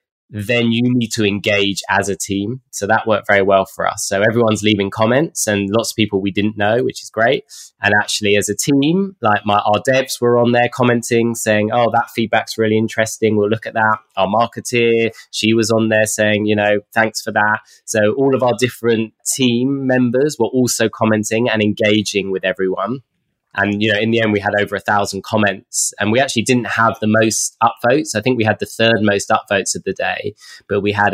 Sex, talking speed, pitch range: male, 215 wpm, 100-115 Hz